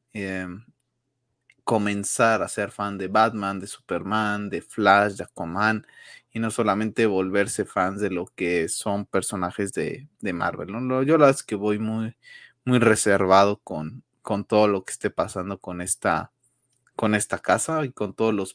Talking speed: 170 wpm